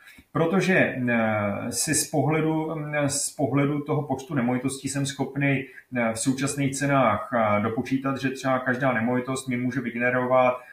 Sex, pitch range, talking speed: male, 125-145 Hz, 125 wpm